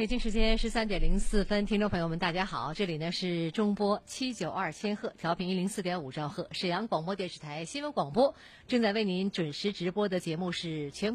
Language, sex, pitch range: Chinese, female, 165-235 Hz